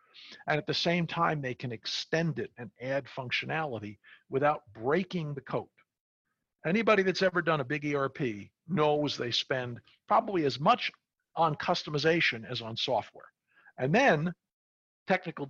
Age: 50-69